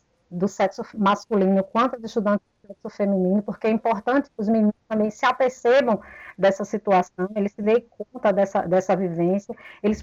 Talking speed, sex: 160 wpm, female